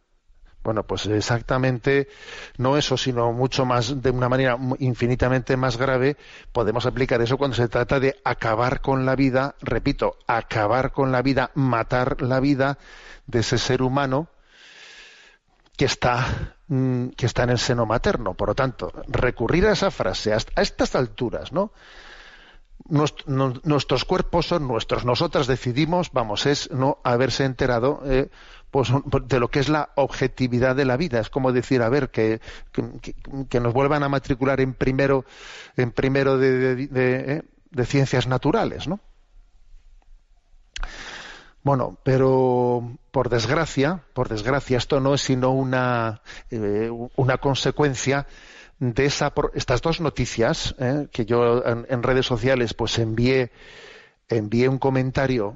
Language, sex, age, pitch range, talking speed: Spanish, male, 50-69, 120-140 Hz, 145 wpm